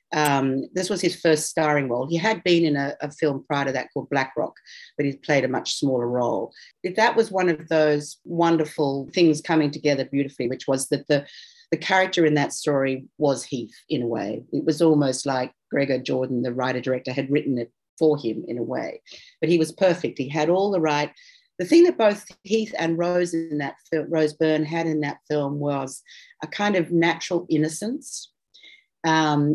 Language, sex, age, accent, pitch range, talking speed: English, female, 40-59, Australian, 140-185 Hz, 205 wpm